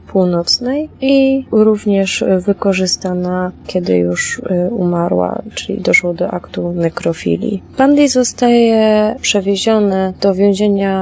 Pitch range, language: 180-220 Hz, Polish